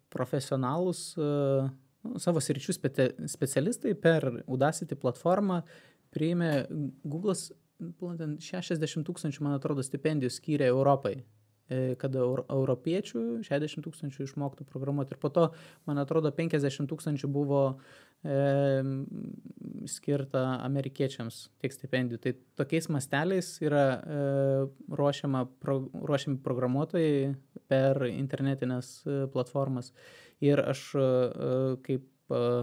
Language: English